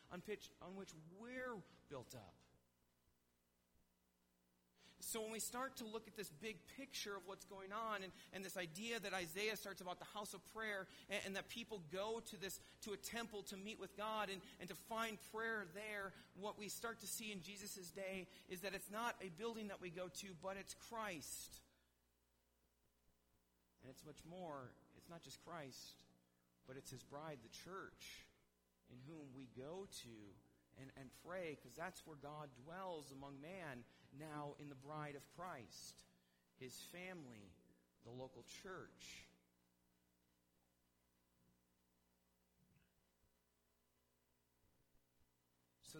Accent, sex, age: American, male, 40-59